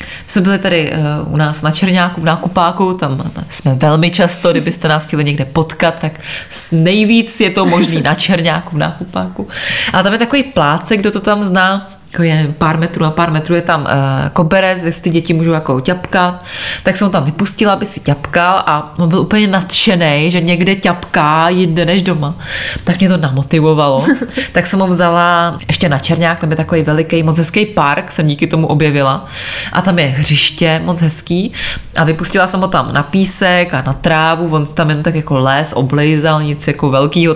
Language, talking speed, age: Czech, 195 wpm, 20-39